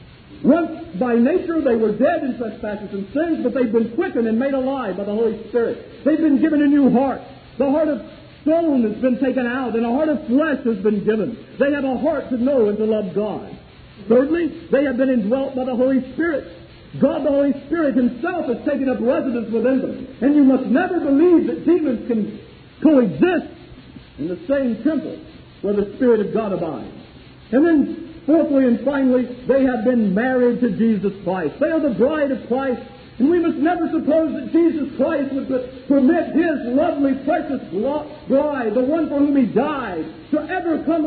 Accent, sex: American, male